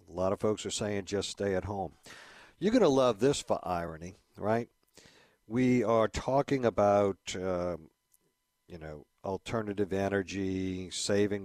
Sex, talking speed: male, 145 wpm